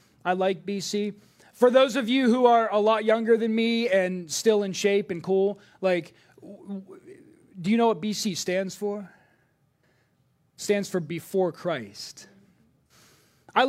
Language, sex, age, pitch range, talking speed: English, male, 30-49, 175-230 Hz, 160 wpm